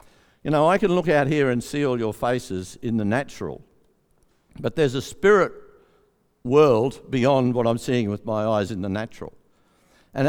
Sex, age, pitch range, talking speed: male, 60-79, 115-160 Hz, 180 wpm